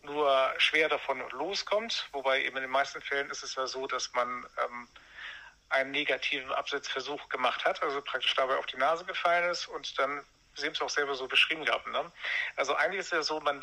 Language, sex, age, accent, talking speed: German, male, 50-69, German, 205 wpm